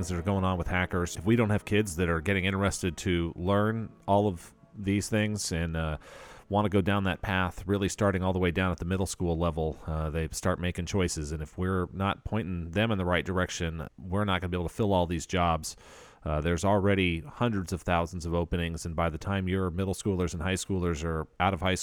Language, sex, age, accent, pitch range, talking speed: English, male, 40-59, American, 85-100 Hz, 240 wpm